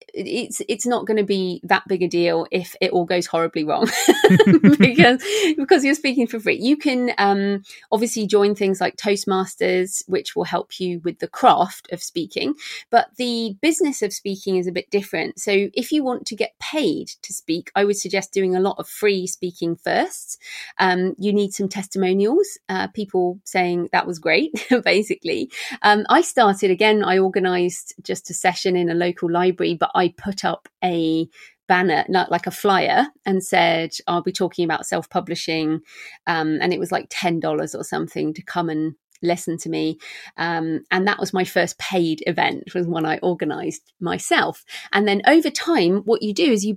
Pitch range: 175-225 Hz